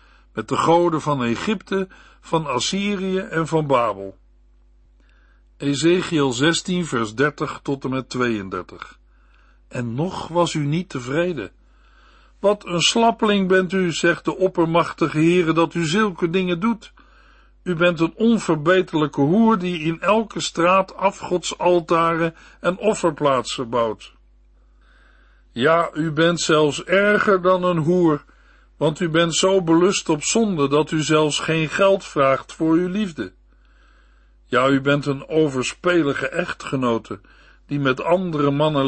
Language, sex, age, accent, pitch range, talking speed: Dutch, male, 60-79, Dutch, 135-175 Hz, 130 wpm